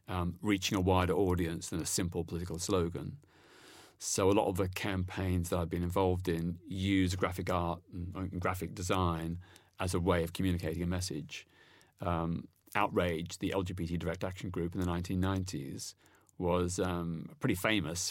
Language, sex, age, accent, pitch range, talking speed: English, male, 30-49, British, 85-95 Hz, 160 wpm